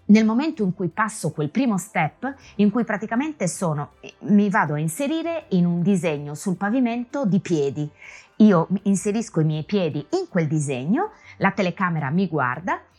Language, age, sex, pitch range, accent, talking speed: Italian, 20-39, female, 150-215 Hz, native, 160 wpm